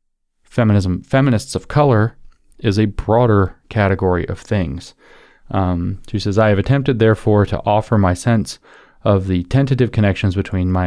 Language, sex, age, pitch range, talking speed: English, male, 30-49, 95-110 Hz, 150 wpm